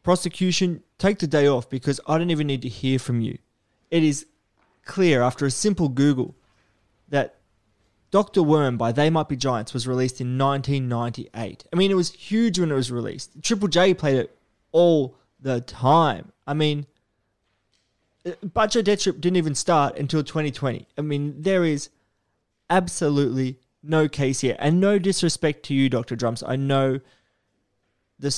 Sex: male